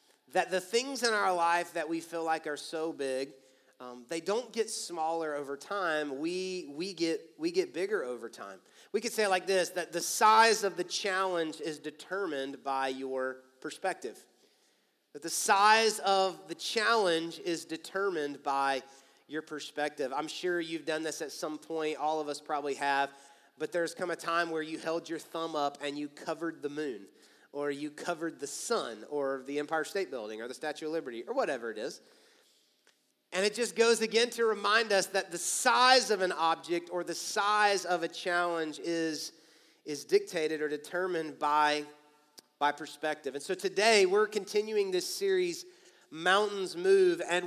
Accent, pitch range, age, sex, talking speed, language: American, 150-205 Hz, 30-49, male, 180 wpm, English